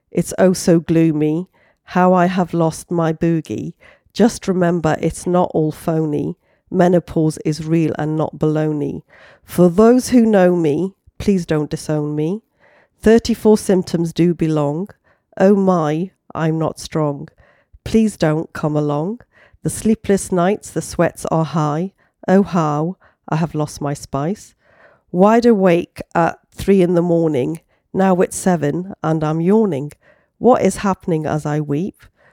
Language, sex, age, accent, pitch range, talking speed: English, female, 40-59, British, 155-190 Hz, 145 wpm